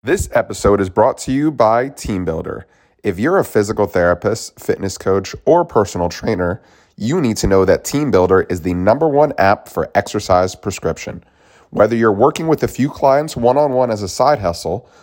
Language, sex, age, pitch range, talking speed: English, male, 30-49, 95-135 Hz, 185 wpm